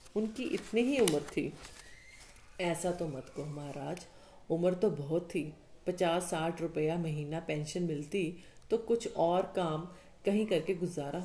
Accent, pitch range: native, 165-215 Hz